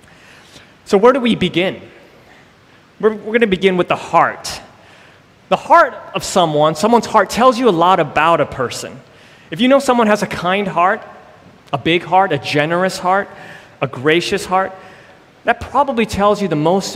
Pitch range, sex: 155-200 Hz, male